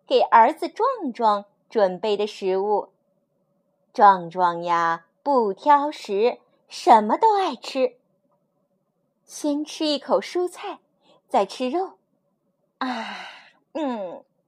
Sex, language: female, Chinese